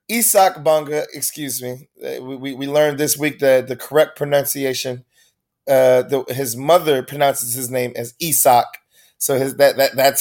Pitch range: 140-180 Hz